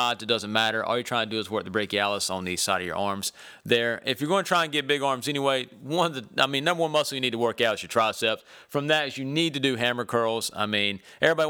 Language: English